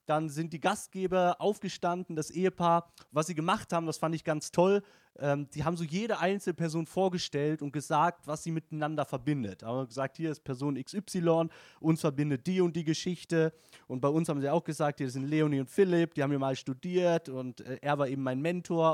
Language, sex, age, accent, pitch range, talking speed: German, male, 30-49, German, 145-180 Hz, 205 wpm